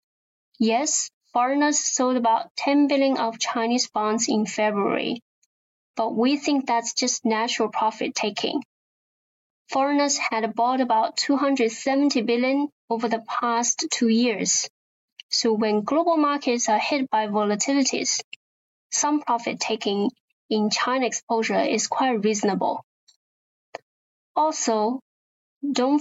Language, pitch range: English, 225-275 Hz